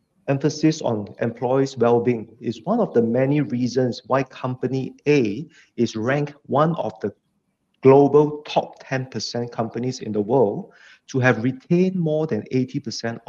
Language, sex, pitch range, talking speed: English, male, 120-155 Hz, 140 wpm